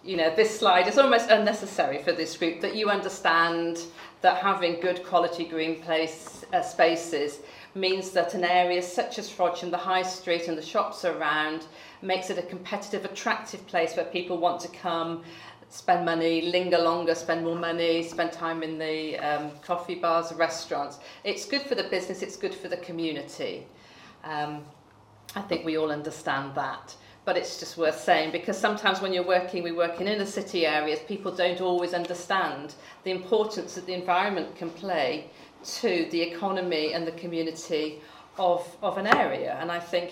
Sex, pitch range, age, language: female, 165-190 Hz, 40-59, English